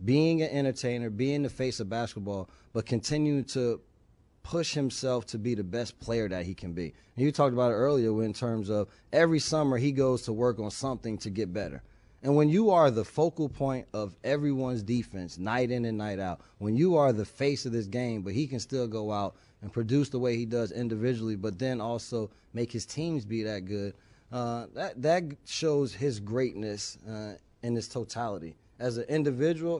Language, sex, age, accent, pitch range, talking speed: English, male, 20-39, American, 110-140 Hz, 200 wpm